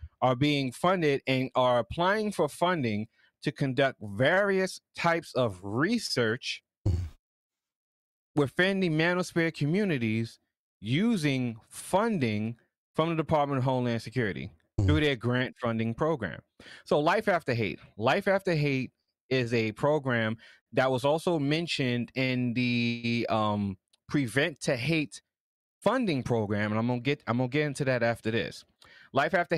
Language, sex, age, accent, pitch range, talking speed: English, male, 30-49, American, 115-155 Hz, 140 wpm